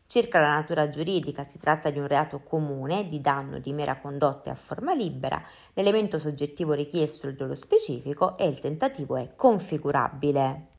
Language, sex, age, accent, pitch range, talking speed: Italian, female, 30-49, native, 140-180 Hz, 160 wpm